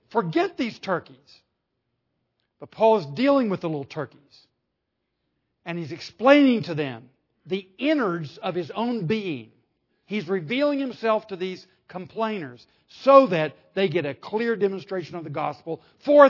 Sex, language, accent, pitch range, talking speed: male, English, American, 170-255 Hz, 145 wpm